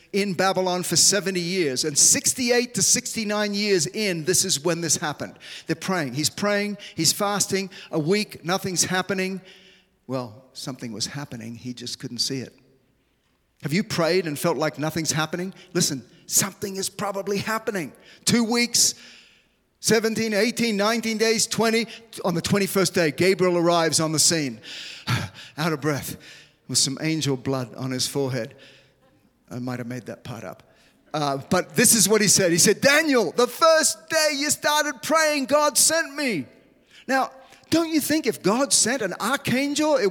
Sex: male